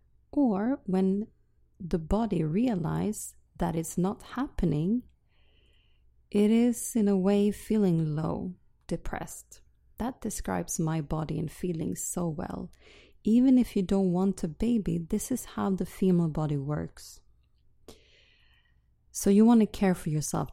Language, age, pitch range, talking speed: English, 30-49, 165-220 Hz, 135 wpm